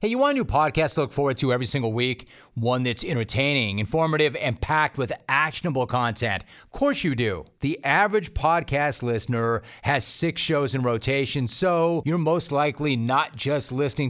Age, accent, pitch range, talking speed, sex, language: 40-59, American, 125-155 Hz, 180 wpm, male, English